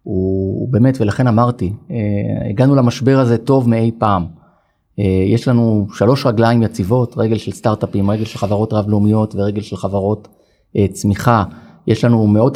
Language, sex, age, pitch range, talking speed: Hebrew, male, 30-49, 105-125 Hz, 145 wpm